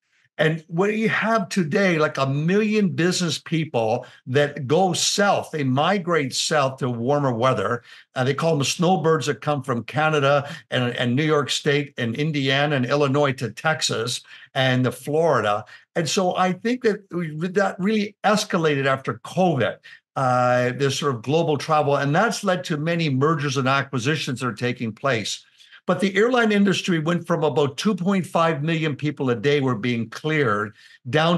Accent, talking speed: American, 170 wpm